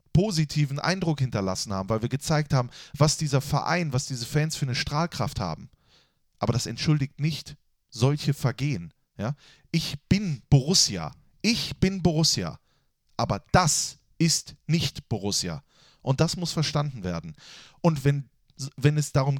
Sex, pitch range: male, 135-175 Hz